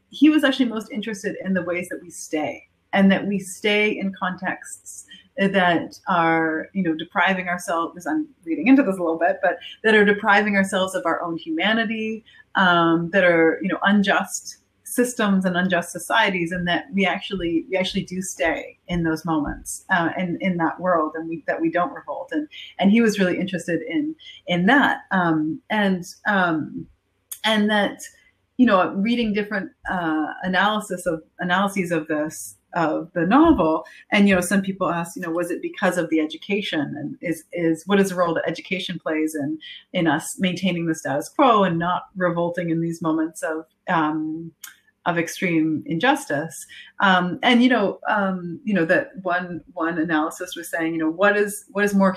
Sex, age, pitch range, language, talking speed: female, 30-49, 165-205 Hz, English, 185 wpm